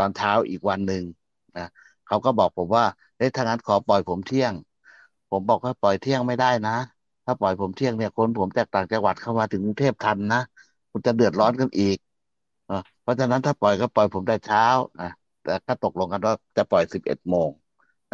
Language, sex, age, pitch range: Thai, male, 60-79, 95-120 Hz